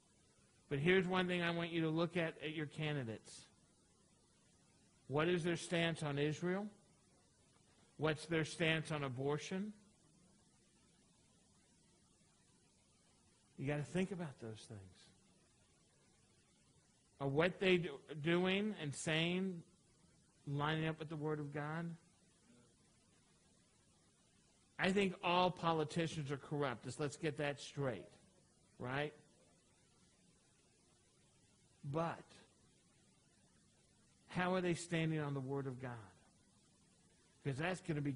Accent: American